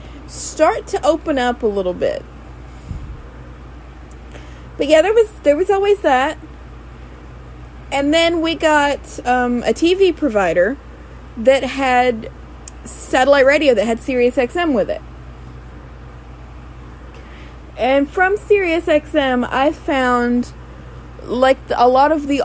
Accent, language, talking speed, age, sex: American, English, 120 wpm, 30-49, female